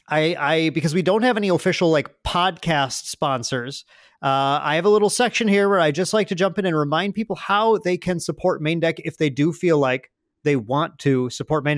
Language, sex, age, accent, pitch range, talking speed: English, male, 30-49, American, 145-185 Hz, 225 wpm